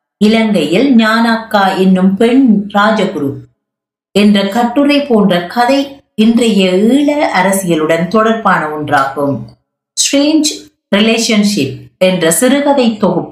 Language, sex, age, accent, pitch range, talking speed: Tamil, female, 50-69, native, 175-240 Hz, 50 wpm